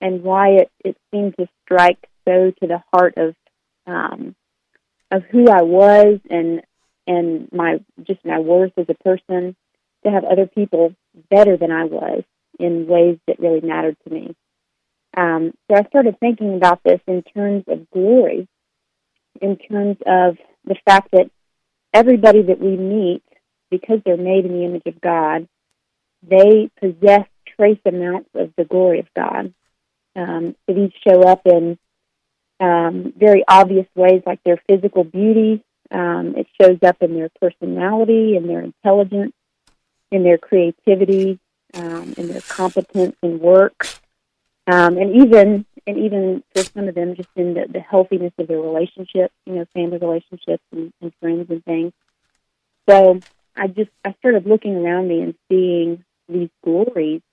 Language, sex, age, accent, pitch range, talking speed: English, female, 40-59, American, 175-195 Hz, 155 wpm